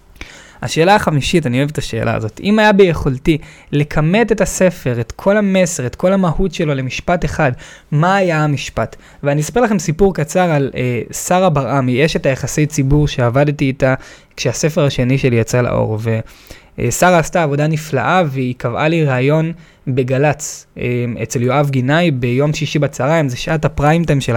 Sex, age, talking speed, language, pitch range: male, 20-39, 165 wpm, Hebrew, 130-180 Hz